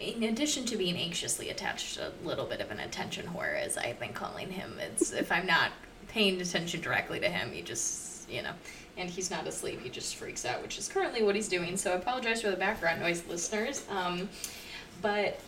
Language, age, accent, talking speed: English, 20-39, American, 215 wpm